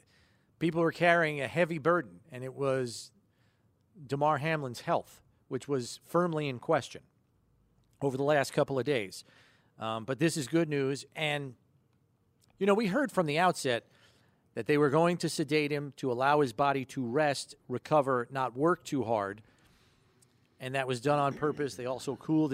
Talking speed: 170 wpm